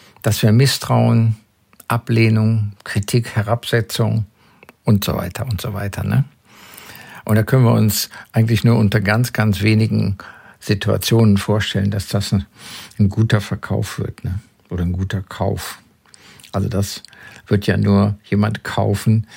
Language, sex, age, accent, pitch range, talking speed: German, male, 50-69, German, 100-120 Hz, 140 wpm